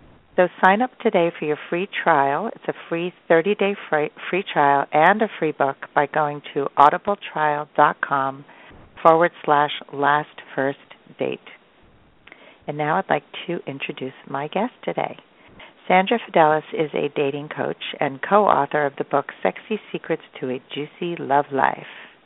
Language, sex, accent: English, female, American